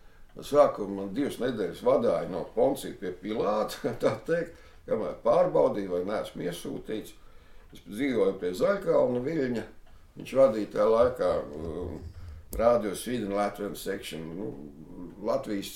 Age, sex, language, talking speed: 60-79, male, English, 115 wpm